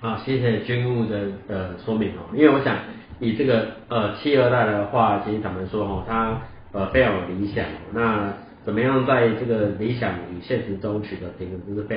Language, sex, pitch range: Chinese, male, 95-115 Hz